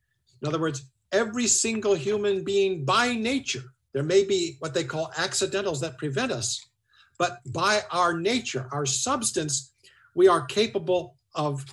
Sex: male